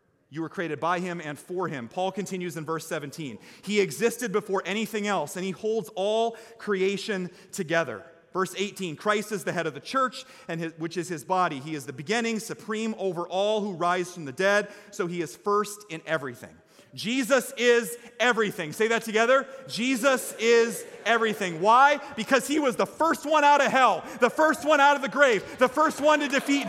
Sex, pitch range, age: male, 185-250 Hz, 30-49